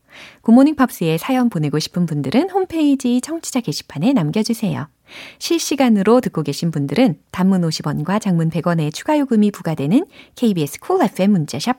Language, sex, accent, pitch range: Korean, female, native, 165-265 Hz